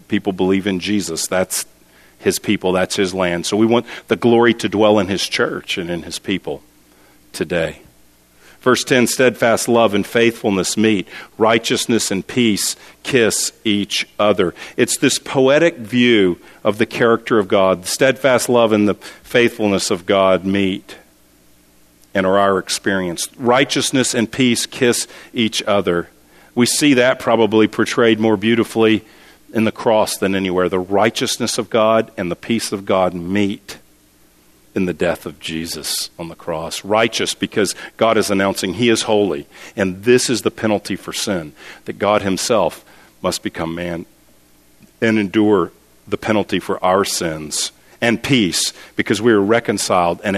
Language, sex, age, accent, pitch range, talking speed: English, male, 50-69, American, 95-115 Hz, 155 wpm